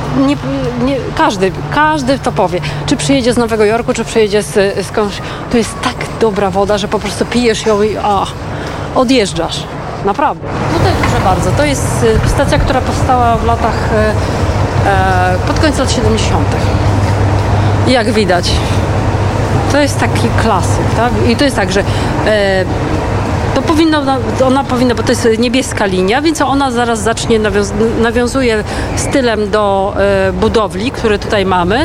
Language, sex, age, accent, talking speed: Polish, female, 30-49, native, 155 wpm